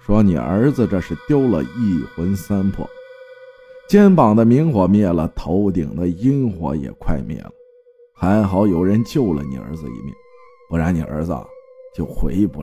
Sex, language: male, Chinese